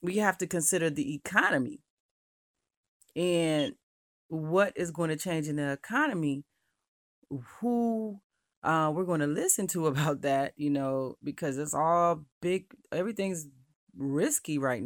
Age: 30-49